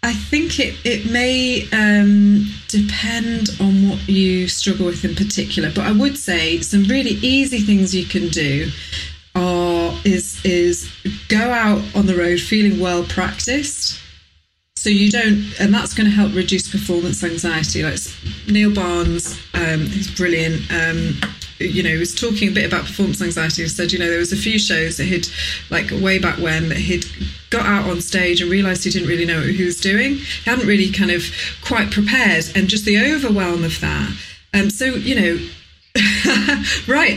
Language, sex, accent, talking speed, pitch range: English, female, British, 180 wpm, 170-205 Hz